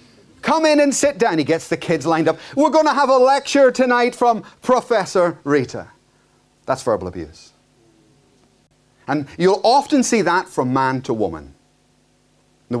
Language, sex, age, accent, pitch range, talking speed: English, male, 30-49, British, 125-185 Hz, 160 wpm